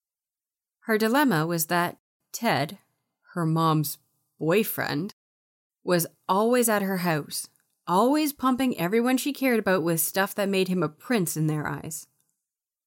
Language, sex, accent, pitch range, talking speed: English, female, American, 155-200 Hz, 135 wpm